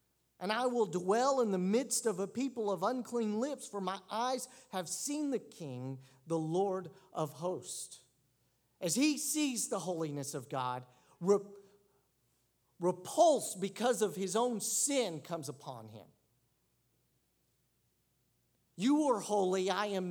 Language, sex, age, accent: English, male, 50-69, American